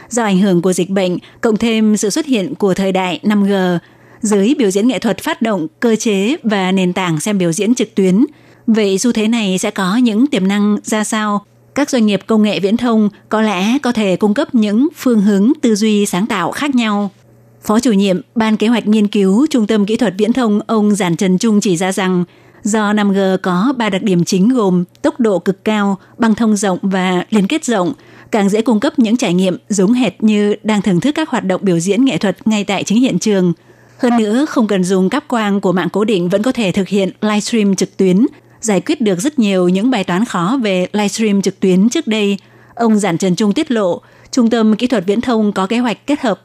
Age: 20-39